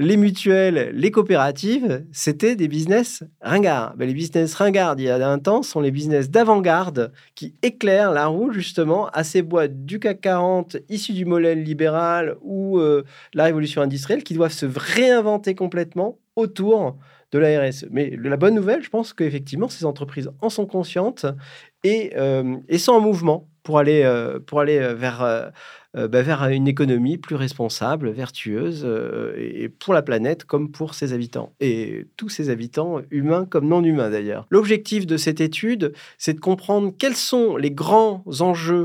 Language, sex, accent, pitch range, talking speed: French, male, French, 140-190 Hz, 175 wpm